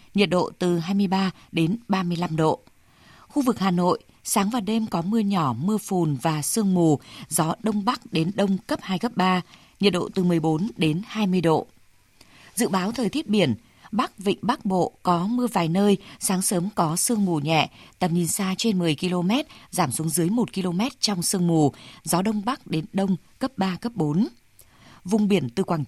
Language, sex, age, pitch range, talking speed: Vietnamese, female, 20-39, 165-215 Hz, 195 wpm